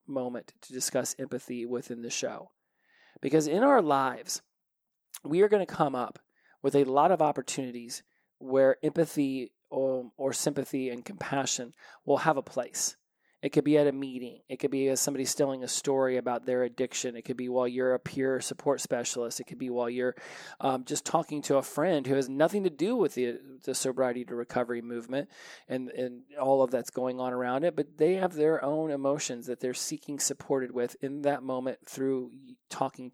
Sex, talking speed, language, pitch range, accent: male, 195 wpm, English, 125-145 Hz, American